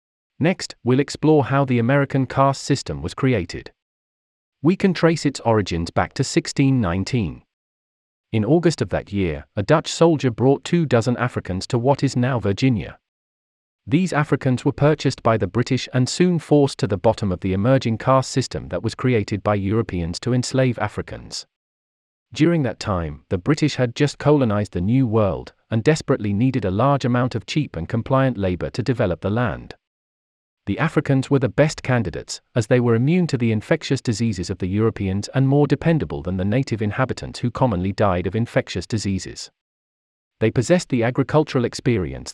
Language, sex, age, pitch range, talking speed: English, male, 40-59, 100-140 Hz, 175 wpm